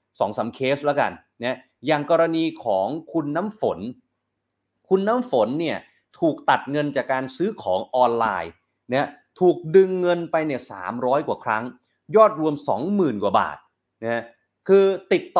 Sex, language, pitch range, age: male, Thai, 130-180 Hz, 30-49